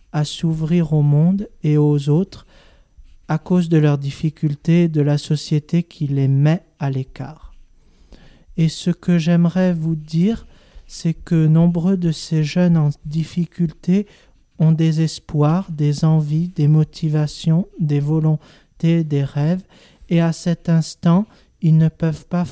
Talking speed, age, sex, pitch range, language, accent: 145 wpm, 40-59, male, 150-170 Hz, French, French